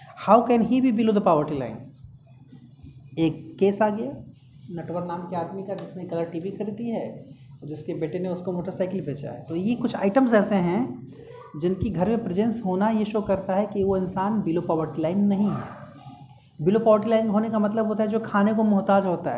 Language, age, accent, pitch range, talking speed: Hindi, 30-49, native, 160-210 Hz, 205 wpm